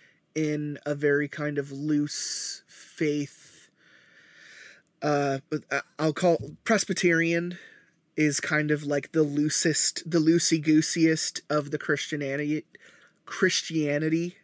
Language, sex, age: English, male, 20-39